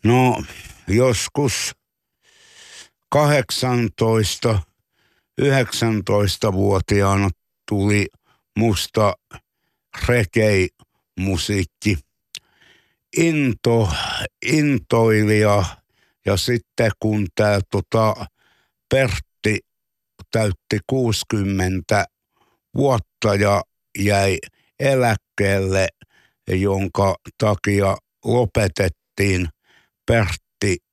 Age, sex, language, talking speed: 60-79, male, Finnish, 45 wpm